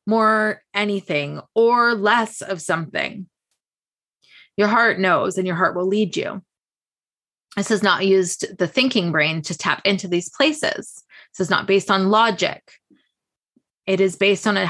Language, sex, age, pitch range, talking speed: English, female, 20-39, 180-205 Hz, 155 wpm